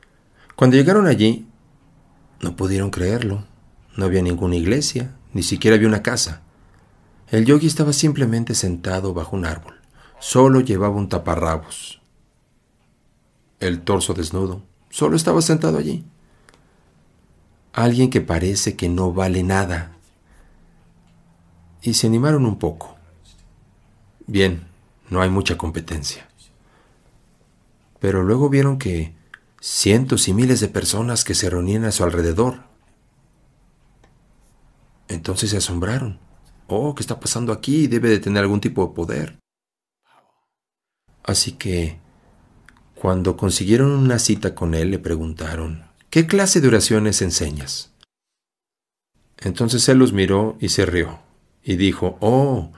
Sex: male